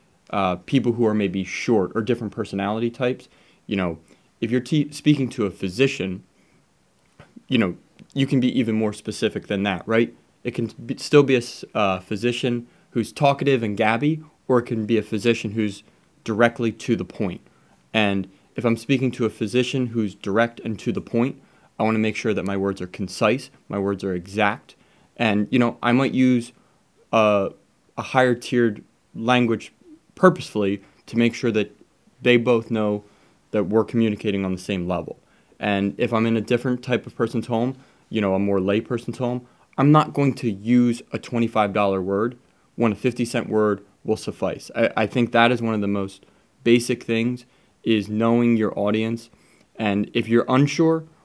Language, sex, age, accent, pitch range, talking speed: English, male, 20-39, American, 105-125 Hz, 180 wpm